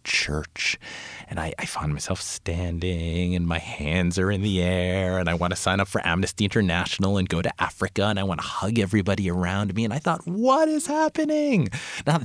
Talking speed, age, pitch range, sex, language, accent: 205 wpm, 30-49, 80-110 Hz, male, English, American